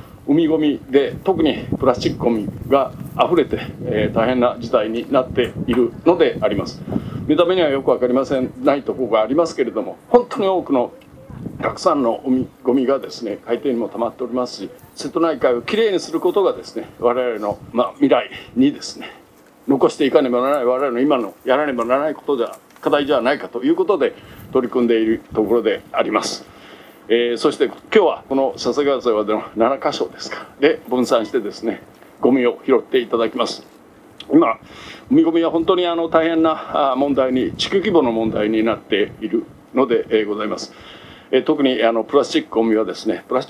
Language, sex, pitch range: Japanese, male, 120-165 Hz